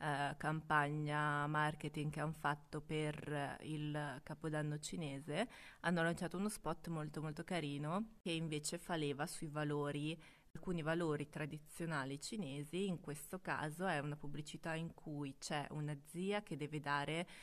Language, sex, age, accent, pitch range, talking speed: Italian, female, 20-39, native, 150-175 Hz, 140 wpm